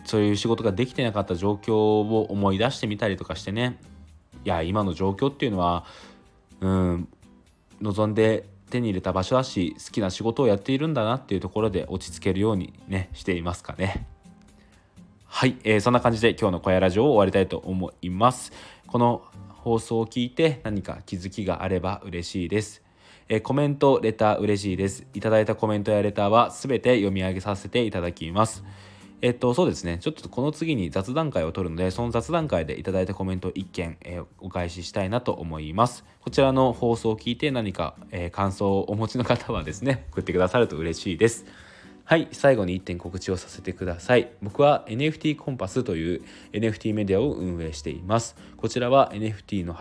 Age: 20-39